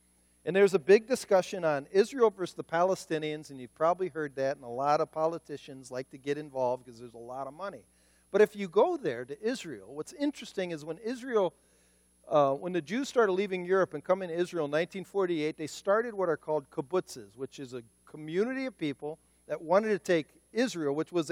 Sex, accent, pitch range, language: male, American, 140-195 Hz, English